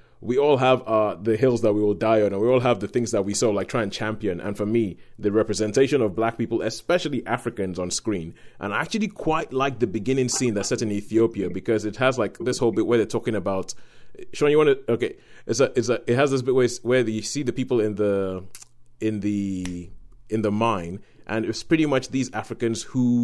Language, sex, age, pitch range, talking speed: English, male, 30-49, 105-125 Hz, 240 wpm